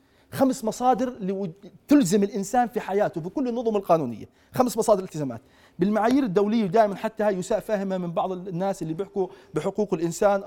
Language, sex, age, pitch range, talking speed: Arabic, male, 40-59, 200-255 Hz, 150 wpm